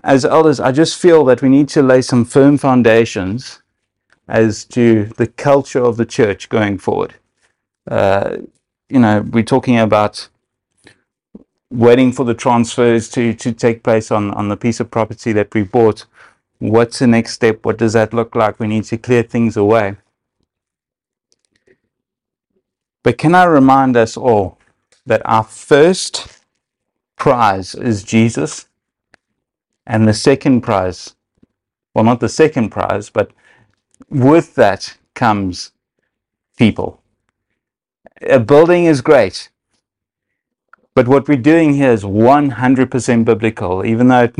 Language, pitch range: English, 110-130 Hz